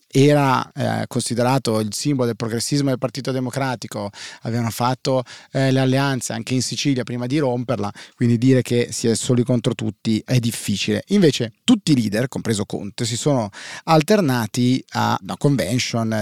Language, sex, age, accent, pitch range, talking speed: Italian, male, 30-49, native, 115-145 Hz, 160 wpm